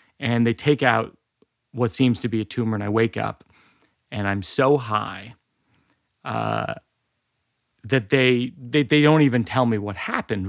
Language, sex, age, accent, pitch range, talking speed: English, male, 30-49, American, 110-135 Hz, 165 wpm